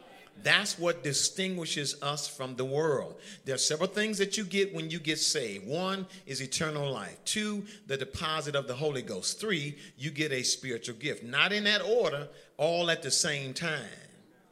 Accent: American